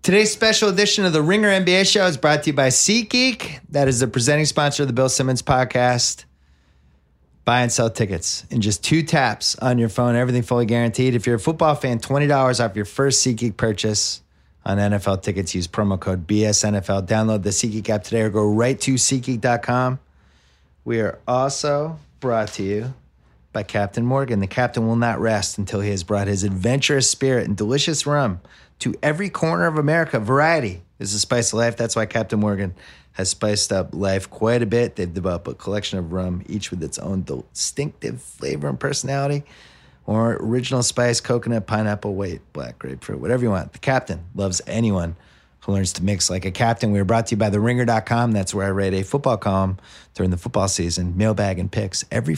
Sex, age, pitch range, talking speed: male, 30-49, 95-130 Hz, 195 wpm